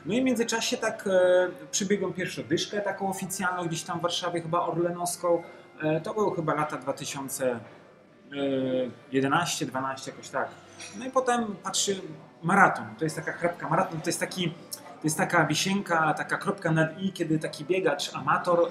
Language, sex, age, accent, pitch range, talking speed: Polish, male, 30-49, native, 150-185 Hz, 160 wpm